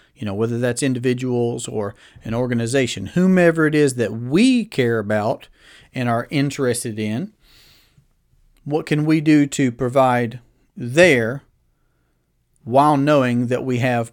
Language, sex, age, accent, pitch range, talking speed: English, male, 40-59, American, 115-145 Hz, 130 wpm